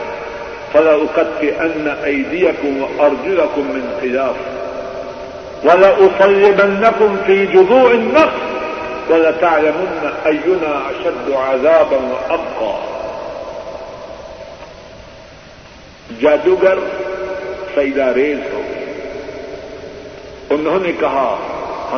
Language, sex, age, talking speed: Urdu, male, 50-69, 65 wpm